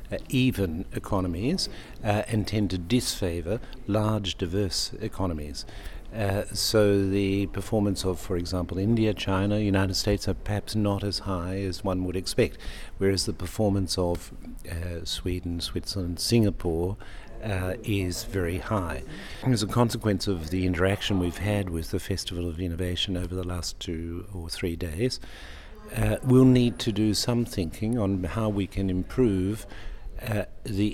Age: 50-69